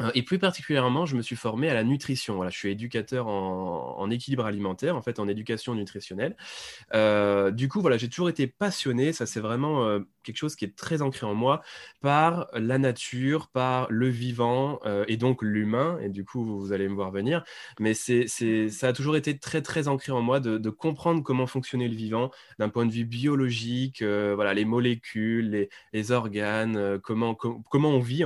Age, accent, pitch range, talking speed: 20-39, French, 110-140 Hz, 200 wpm